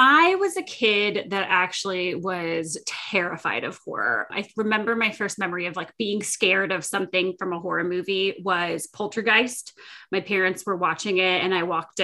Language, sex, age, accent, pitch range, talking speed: English, female, 20-39, American, 185-235 Hz, 175 wpm